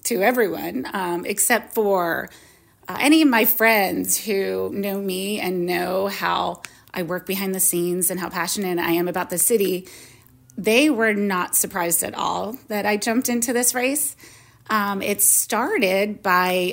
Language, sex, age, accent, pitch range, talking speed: English, female, 30-49, American, 185-230 Hz, 160 wpm